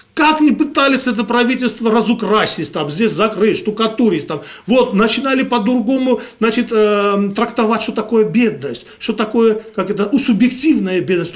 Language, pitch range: Russian, 200-255 Hz